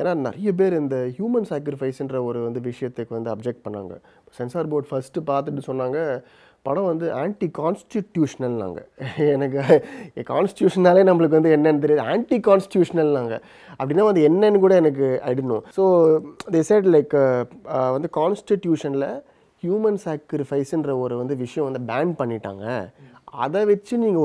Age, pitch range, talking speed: 30-49, 120-165 Hz, 130 wpm